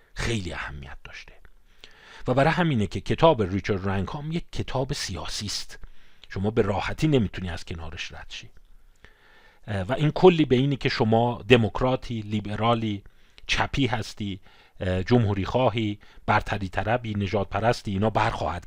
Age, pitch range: 40-59, 95-125 Hz